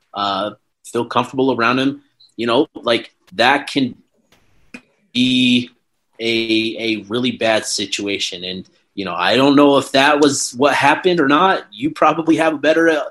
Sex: male